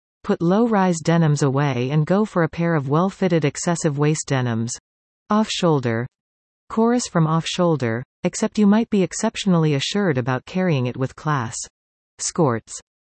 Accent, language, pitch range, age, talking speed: American, English, 130-185 Hz, 40-59, 135 wpm